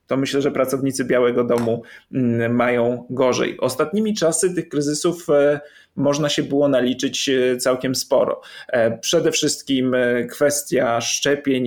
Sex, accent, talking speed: male, native, 115 wpm